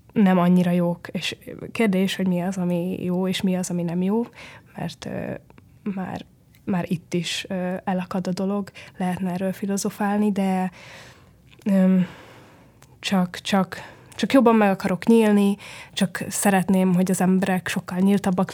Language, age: Hungarian, 20-39